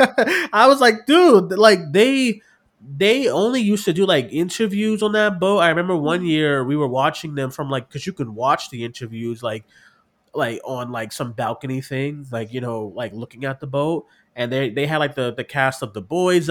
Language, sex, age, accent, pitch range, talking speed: English, male, 20-39, American, 125-165 Hz, 210 wpm